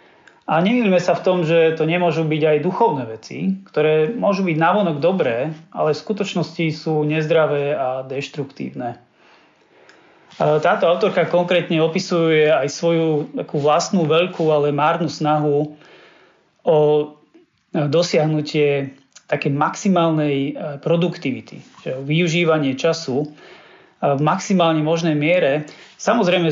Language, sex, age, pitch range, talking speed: Slovak, male, 30-49, 150-175 Hz, 110 wpm